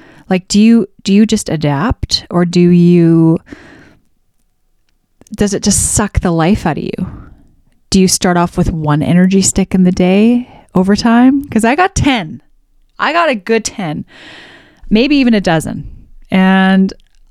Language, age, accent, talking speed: English, 20-39, American, 160 wpm